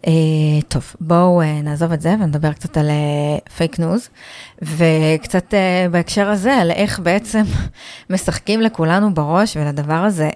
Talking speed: 145 wpm